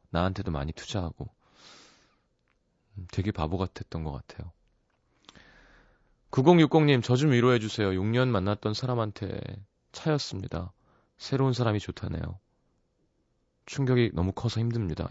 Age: 30-49